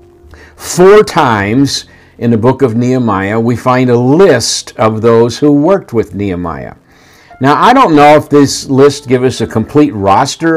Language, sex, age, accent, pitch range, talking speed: English, male, 50-69, American, 110-140 Hz, 165 wpm